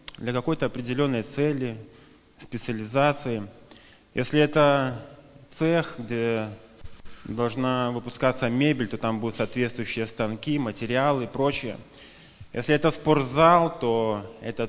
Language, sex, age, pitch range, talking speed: Russian, male, 20-39, 115-140 Hz, 100 wpm